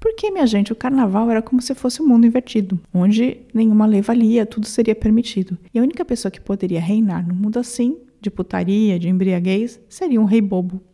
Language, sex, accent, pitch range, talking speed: Portuguese, female, Brazilian, 195-250 Hz, 205 wpm